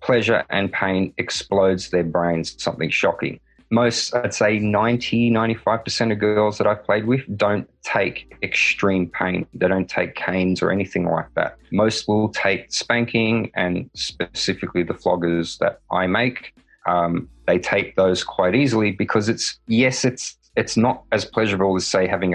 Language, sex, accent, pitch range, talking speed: English, male, Australian, 90-115 Hz, 155 wpm